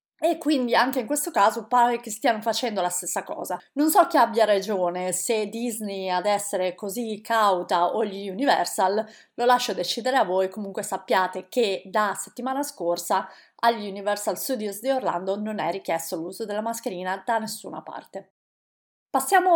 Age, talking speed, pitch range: 30-49, 165 wpm, 195-240 Hz